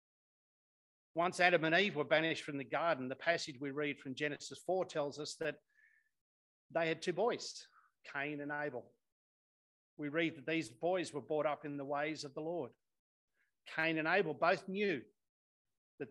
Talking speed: 170 wpm